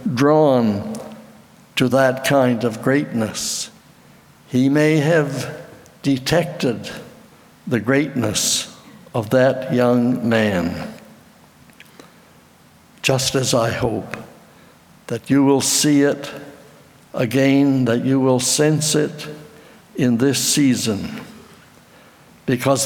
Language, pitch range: English, 120-150 Hz